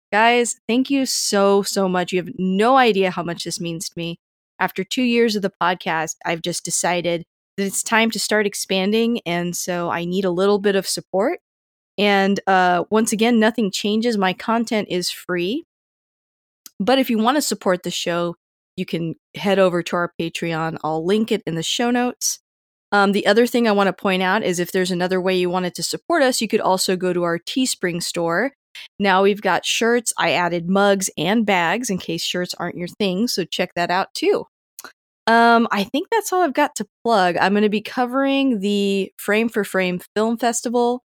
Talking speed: 205 wpm